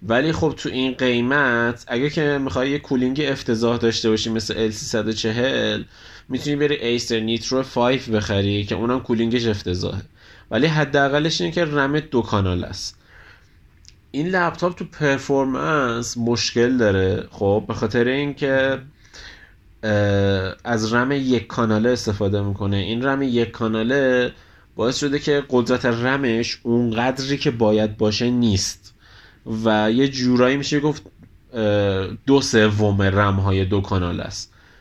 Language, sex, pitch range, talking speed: Persian, male, 105-130 Hz, 135 wpm